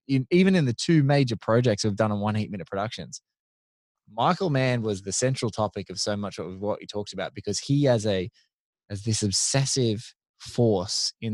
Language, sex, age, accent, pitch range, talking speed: English, male, 20-39, Australian, 100-125 Hz, 195 wpm